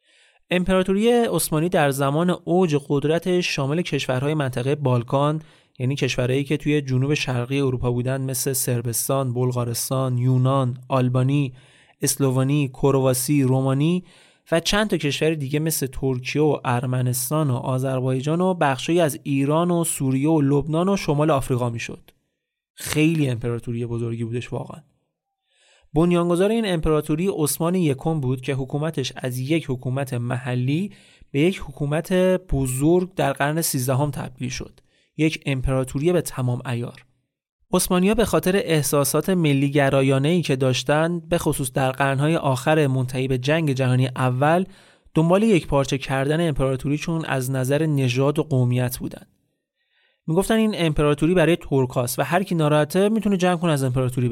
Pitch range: 130-165 Hz